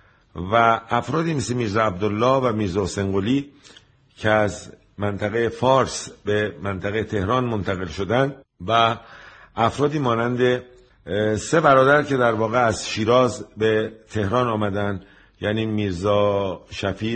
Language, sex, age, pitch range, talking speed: Persian, male, 50-69, 100-120 Hz, 115 wpm